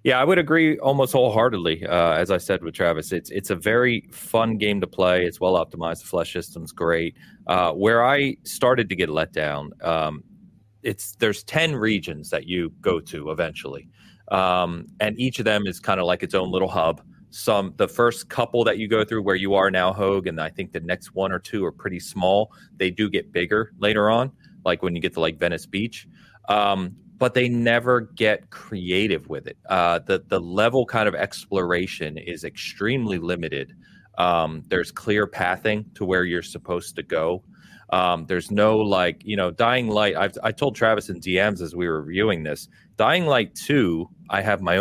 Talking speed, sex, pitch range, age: 200 wpm, male, 90-110 Hz, 30-49